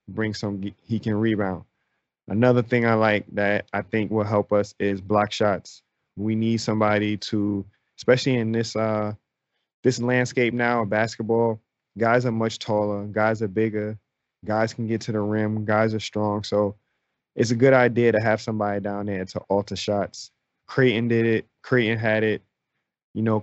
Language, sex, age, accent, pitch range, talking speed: English, male, 20-39, American, 105-120 Hz, 170 wpm